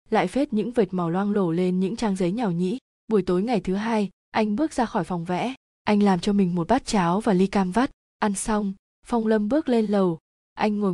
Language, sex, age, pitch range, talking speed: Vietnamese, female, 20-39, 185-225 Hz, 240 wpm